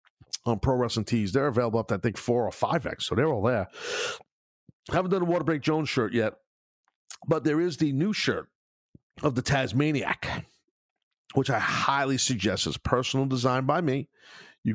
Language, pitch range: English, 100-135 Hz